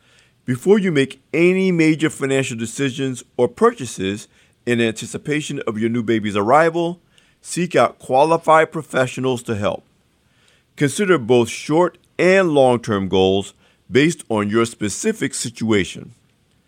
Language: English